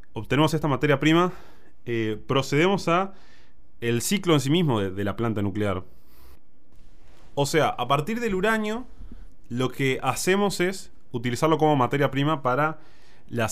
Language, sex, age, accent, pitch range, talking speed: Spanish, male, 20-39, Argentinian, 110-150 Hz, 145 wpm